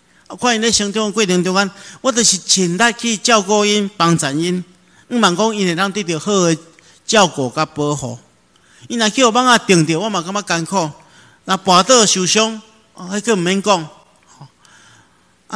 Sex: male